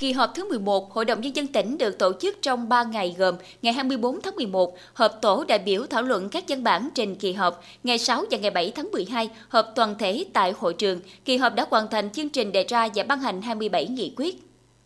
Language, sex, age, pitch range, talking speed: Vietnamese, female, 20-39, 200-275 Hz, 240 wpm